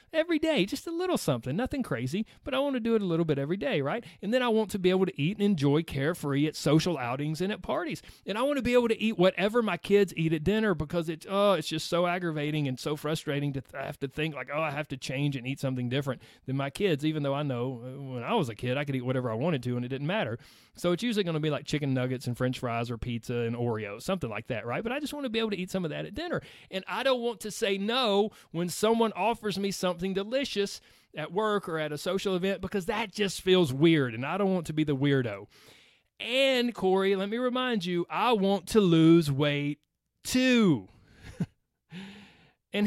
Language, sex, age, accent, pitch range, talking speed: English, male, 30-49, American, 145-210 Hz, 250 wpm